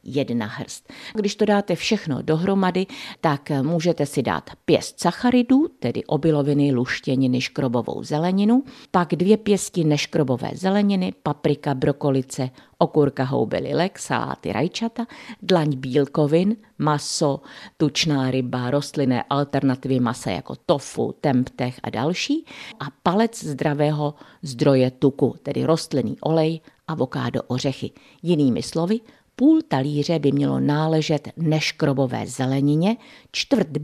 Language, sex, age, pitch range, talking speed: Czech, female, 50-69, 130-180 Hz, 110 wpm